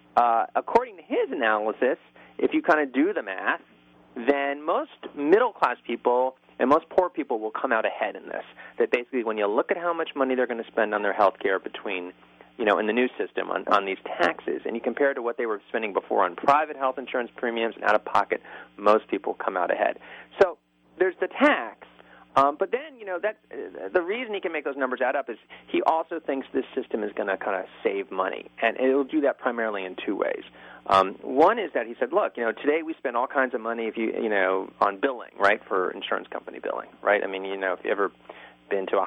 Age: 30-49